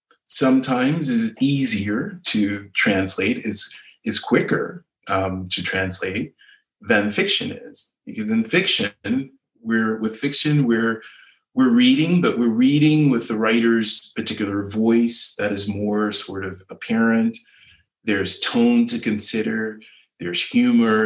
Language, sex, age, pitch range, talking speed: English, male, 30-49, 110-180 Hz, 125 wpm